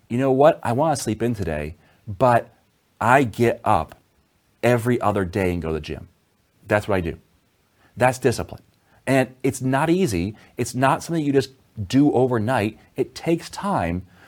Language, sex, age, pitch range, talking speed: English, male, 30-49, 100-135 Hz, 170 wpm